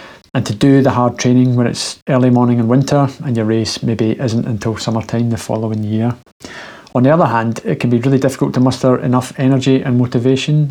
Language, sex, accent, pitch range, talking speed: English, male, British, 115-130 Hz, 205 wpm